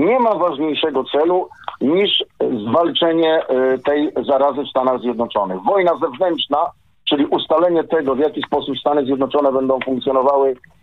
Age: 50-69